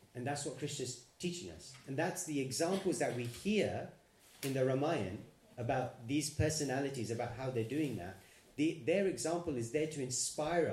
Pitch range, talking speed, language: 115-155 Hz, 175 wpm, English